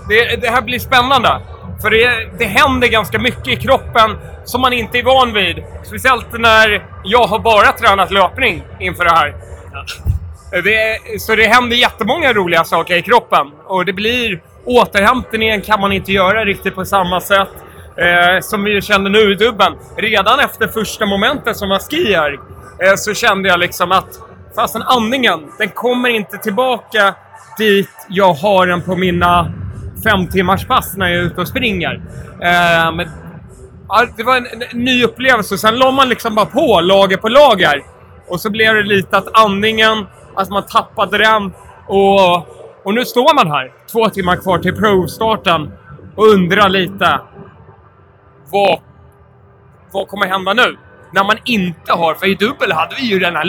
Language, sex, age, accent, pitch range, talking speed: Swedish, male, 30-49, native, 185-225 Hz, 165 wpm